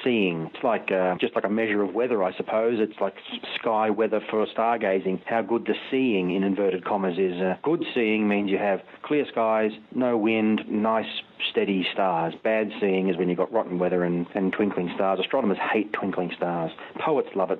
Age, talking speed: 40-59, 195 wpm